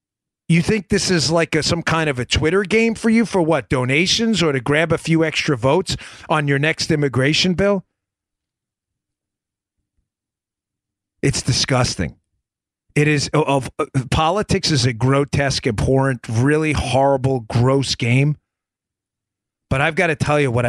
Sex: male